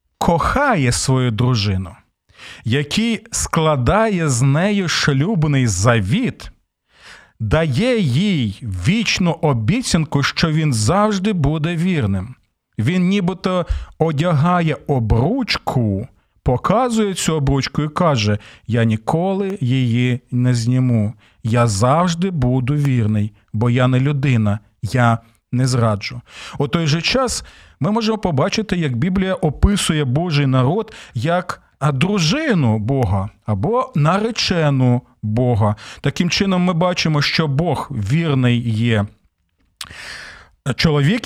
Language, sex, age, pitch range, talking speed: Ukrainian, male, 40-59, 120-180 Hz, 100 wpm